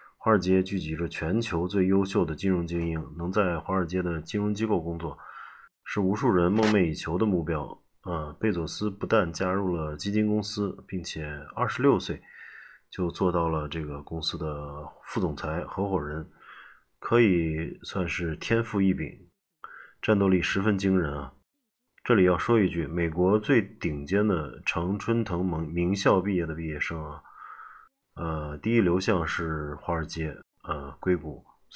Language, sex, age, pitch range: Chinese, male, 20-39, 80-105 Hz